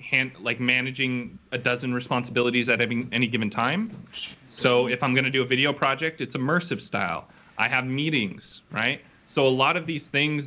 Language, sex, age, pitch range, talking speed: English, male, 20-39, 120-150 Hz, 185 wpm